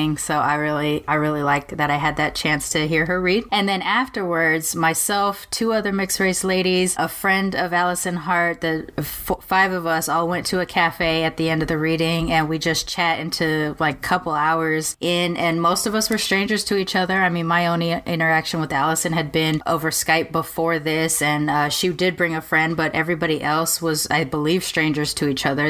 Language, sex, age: English, female, 20-39